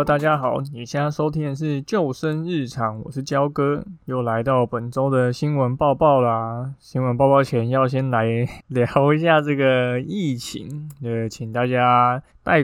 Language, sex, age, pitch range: Chinese, male, 20-39, 120-140 Hz